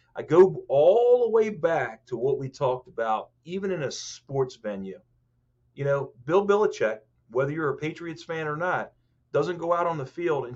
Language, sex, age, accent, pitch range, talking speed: English, male, 40-59, American, 120-170 Hz, 195 wpm